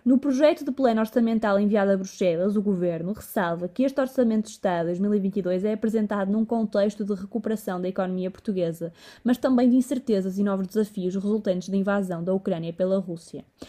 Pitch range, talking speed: 190-235 Hz, 175 wpm